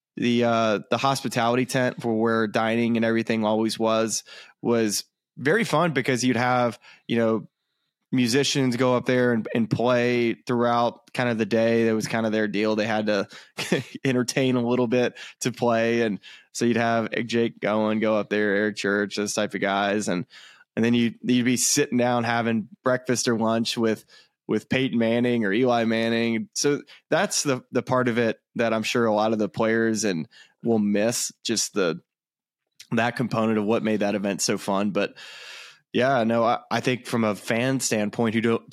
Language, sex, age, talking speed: English, male, 20-39, 190 wpm